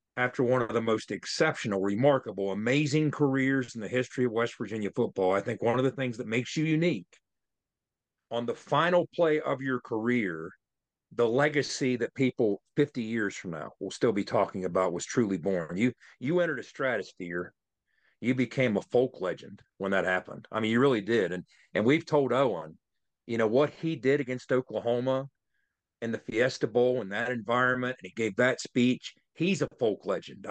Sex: male